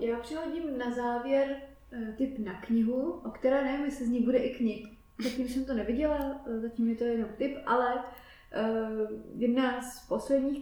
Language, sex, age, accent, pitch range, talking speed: Czech, female, 20-39, native, 215-250 Hz, 175 wpm